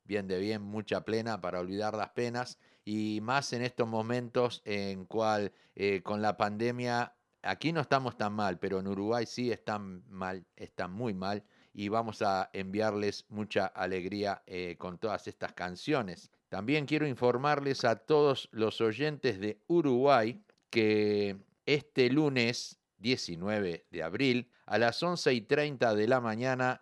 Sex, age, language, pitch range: male, 50-69, Spanish, 100-125 Hz